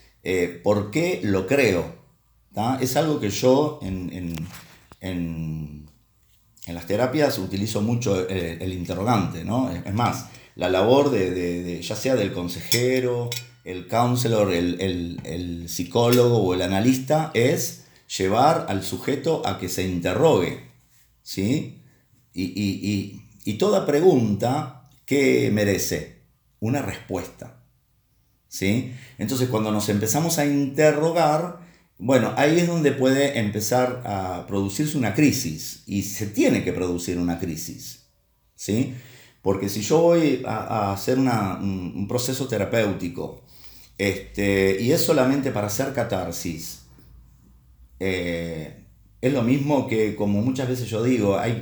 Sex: male